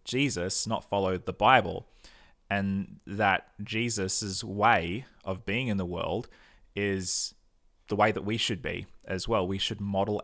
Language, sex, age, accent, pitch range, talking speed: English, male, 20-39, Australian, 90-105 Hz, 150 wpm